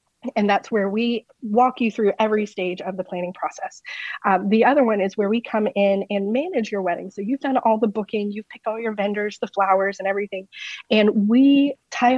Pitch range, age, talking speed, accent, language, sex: 195-235 Hz, 30-49, 215 wpm, American, English, female